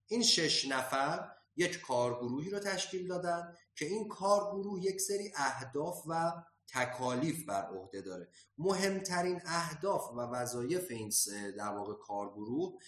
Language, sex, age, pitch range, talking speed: Persian, male, 30-49, 120-175 Hz, 130 wpm